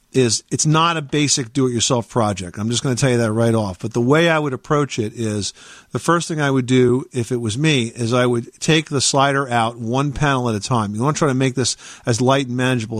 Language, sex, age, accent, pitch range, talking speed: English, male, 50-69, American, 120-150 Hz, 270 wpm